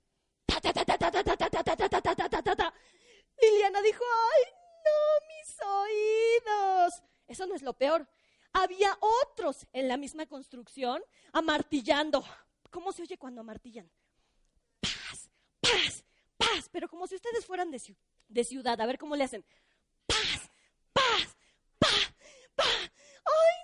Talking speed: 110 wpm